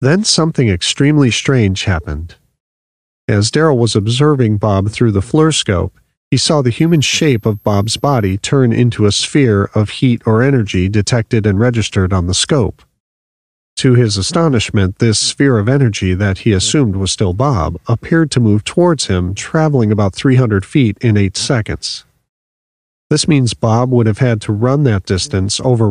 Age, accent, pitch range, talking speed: 40-59, American, 95-130 Hz, 165 wpm